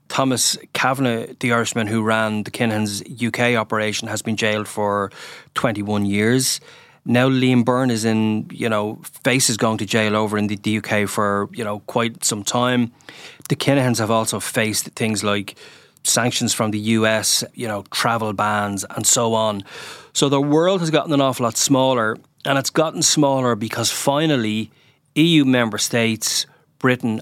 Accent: Irish